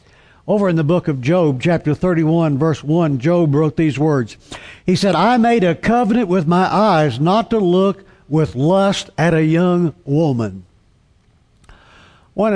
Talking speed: 160 wpm